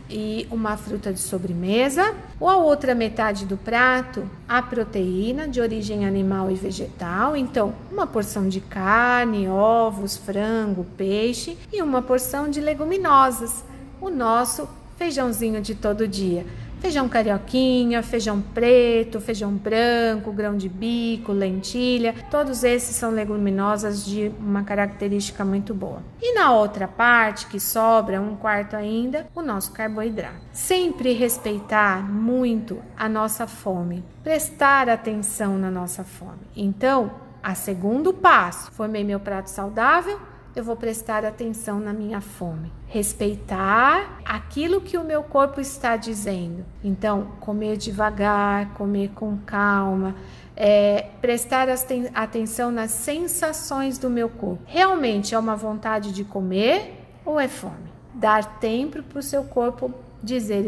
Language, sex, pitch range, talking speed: Portuguese, female, 205-250 Hz, 130 wpm